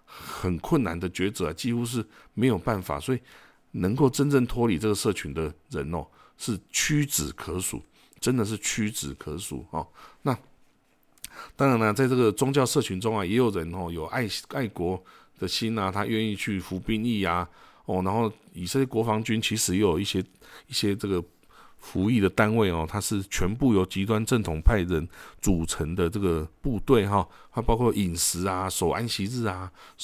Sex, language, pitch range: male, Chinese, 90-115 Hz